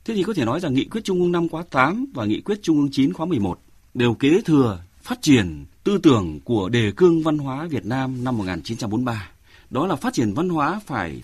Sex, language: male, Vietnamese